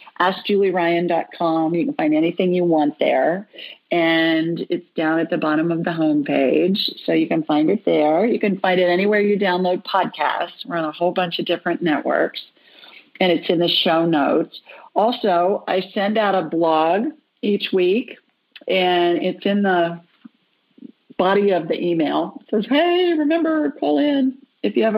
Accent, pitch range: American, 170-225 Hz